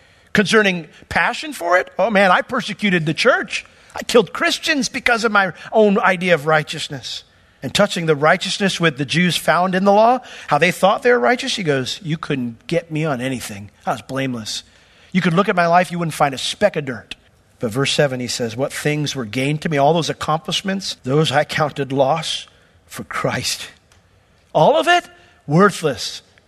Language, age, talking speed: English, 50-69, 195 wpm